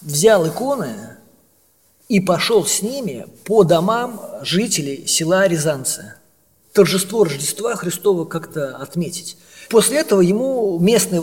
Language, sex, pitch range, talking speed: Russian, male, 175-205 Hz, 105 wpm